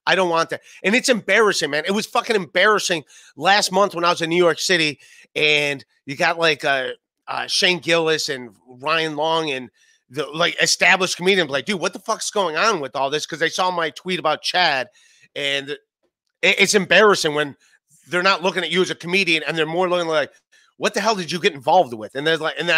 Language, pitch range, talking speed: English, 165-210 Hz, 220 wpm